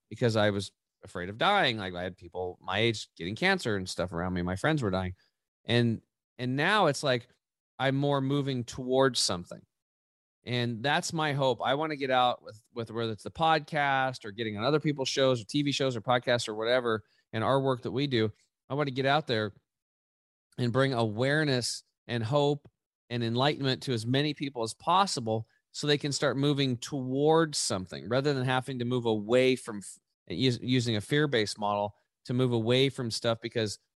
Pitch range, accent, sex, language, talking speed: 105-135 Hz, American, male, English, 195 wpm